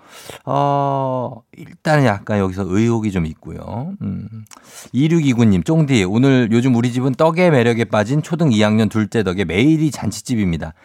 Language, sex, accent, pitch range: Korean, male, native, 100-140 Hz